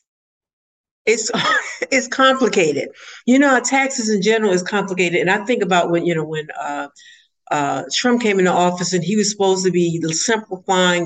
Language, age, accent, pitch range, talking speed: English, 50-69, American, 165-210 Hz, 170 wpm